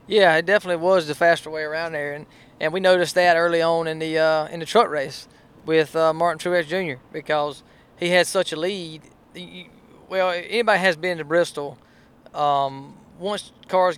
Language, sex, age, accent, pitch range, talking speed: English, male, 20-39, American, 155-185 Hz, 190 wpm